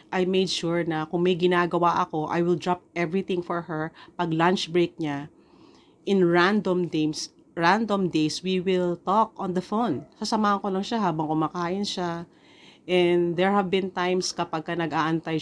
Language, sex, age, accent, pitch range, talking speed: Filipino, female, 40-59, native, 160-195 Hz, 170 wpm